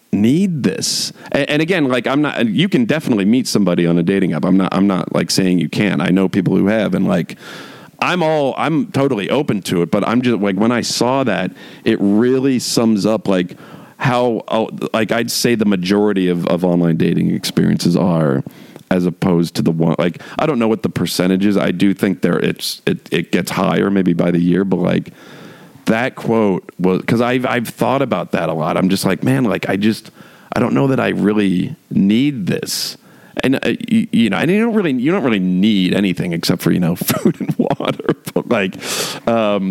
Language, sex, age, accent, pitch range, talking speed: English, male, 40-59, American, 90-115 Hz, 215 wpm